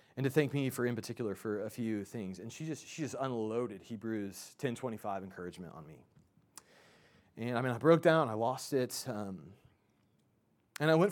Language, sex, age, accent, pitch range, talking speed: English, male, 30-49, American, 115-145 Hz, 200 wpm